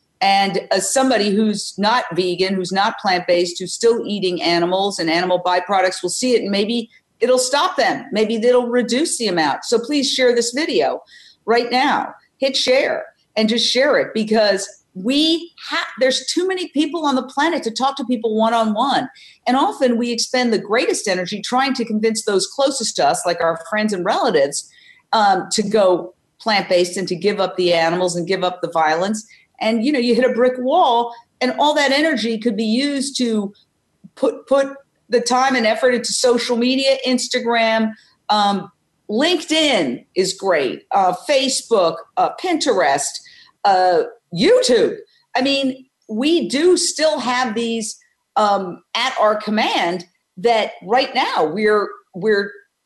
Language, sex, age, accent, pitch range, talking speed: English, female, 50-69, American, 200-270 Hz, 160 wpm